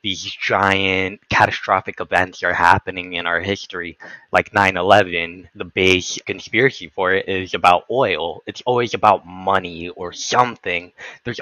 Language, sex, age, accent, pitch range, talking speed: English, male, 10-29, American, 90-105 Hz, 135 wpm